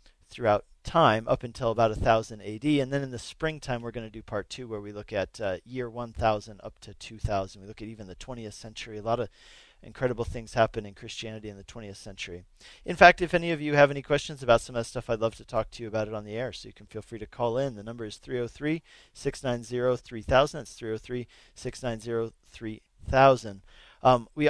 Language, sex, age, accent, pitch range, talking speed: English, male, 40-59, American, 110-135 Hz, 220 wpm